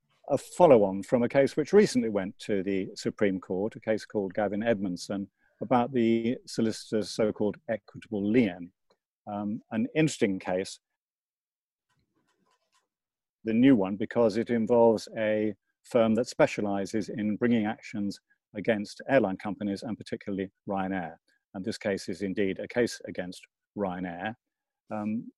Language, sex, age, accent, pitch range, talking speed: English, male, 50-69, British, 100-115 Hz, 130 wpm